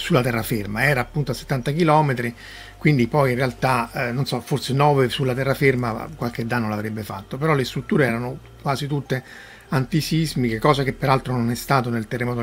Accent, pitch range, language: native, 120-140 Hz, Italian